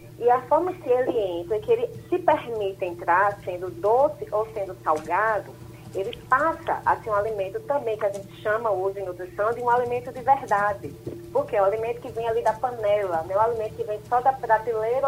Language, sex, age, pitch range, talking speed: Portuguese, female, 20-39, 190-255 Hz, 210 wpm